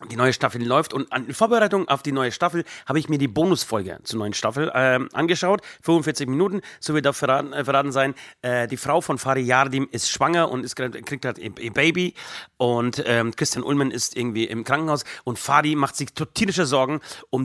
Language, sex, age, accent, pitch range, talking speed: German, male, 40-59, German, 120-150 Hz, 205 wpm